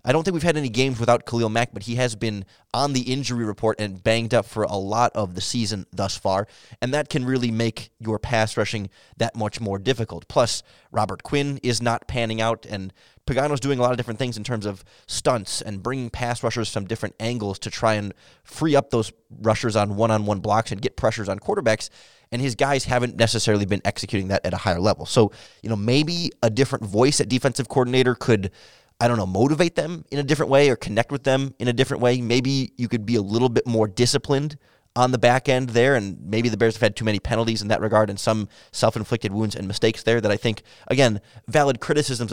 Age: 20-39